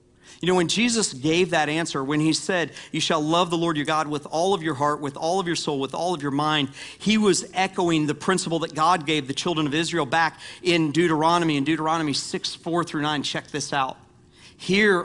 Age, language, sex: 40-59, English, male